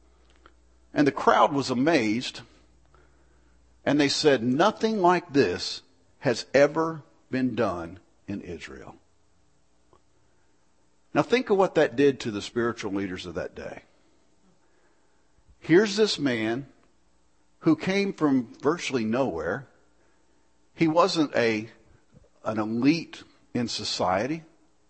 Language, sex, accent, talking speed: English, male, American, 110 wpm